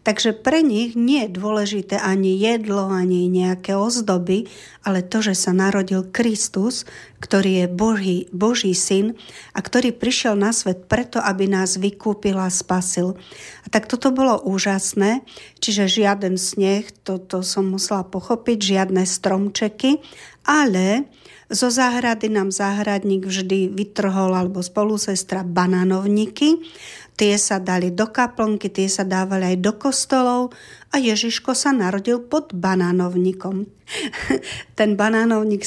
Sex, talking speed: female, 130 wpm